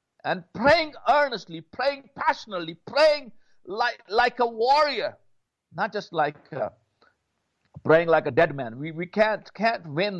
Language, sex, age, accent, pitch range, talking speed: English, male, 60-79, Indian, 175-255 Hz, 140 wpm